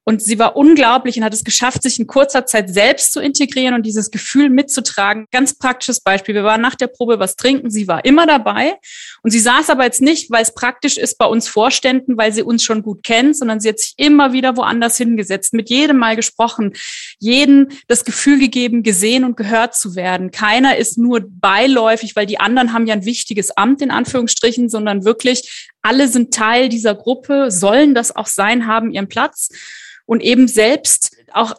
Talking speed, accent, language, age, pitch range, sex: 200 wpm, German, German, 20-39, 215-255 Hz, female